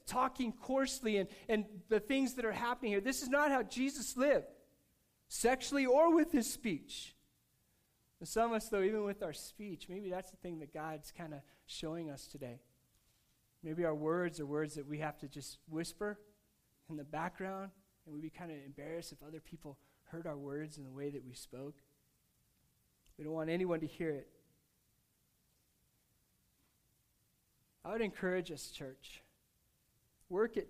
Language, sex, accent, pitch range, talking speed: English, male, American, 145-205 Hz, 170 wpm